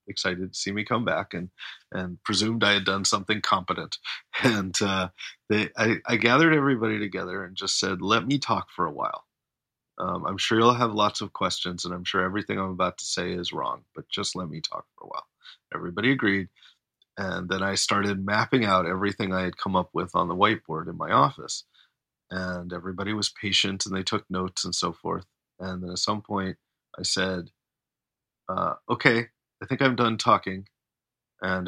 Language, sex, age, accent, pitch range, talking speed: English, male, 30-49, American, 95-105 Hz, 195 wpm